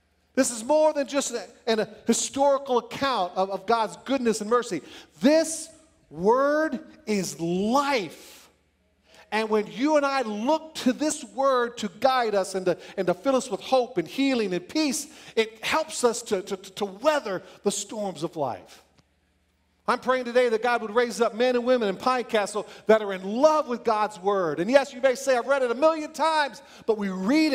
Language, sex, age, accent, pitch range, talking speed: English, male, 40-59, American, 170-255 Hz, 190 wpm